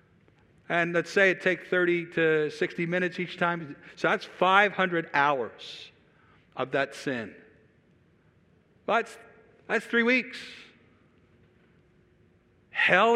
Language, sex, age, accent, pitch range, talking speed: English, male, 60-79, American, 115-195 Hz, 105 wpm